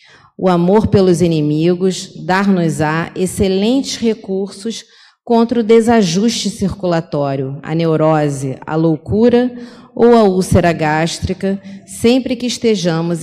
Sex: female